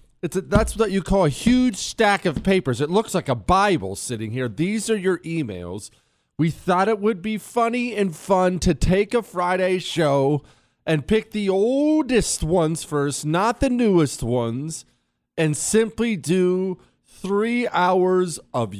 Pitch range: 130-195 Hz